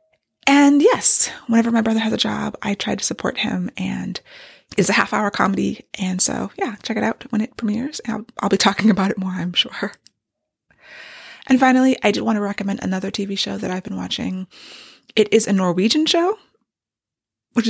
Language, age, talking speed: English, 20-39, 195 wpm